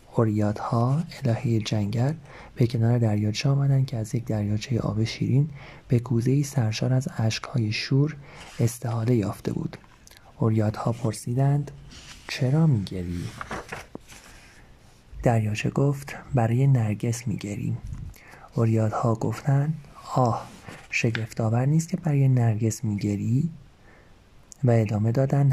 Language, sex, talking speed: Persian, male, 105 wpm